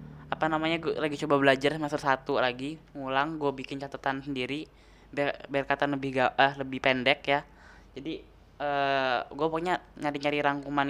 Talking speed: 160 wpm